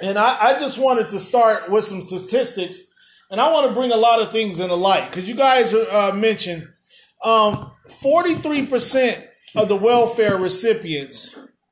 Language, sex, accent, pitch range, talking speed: English, male, American, 190-235 Hz, 165 wpm